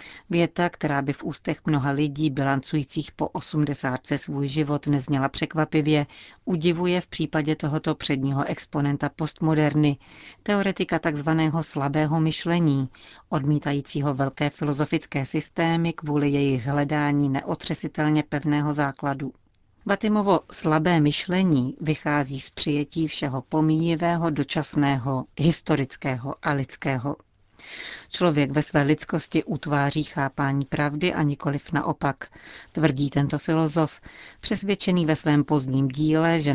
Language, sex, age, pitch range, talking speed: Czech, female, 40-59, 140-160 Hz, 110 wpm